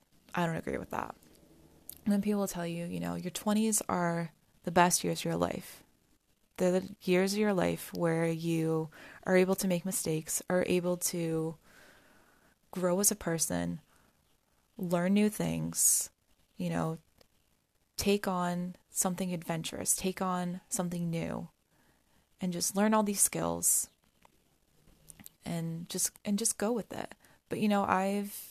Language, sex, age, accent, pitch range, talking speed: English, female, 20-39, American, 170-205 Hz, 150 wpm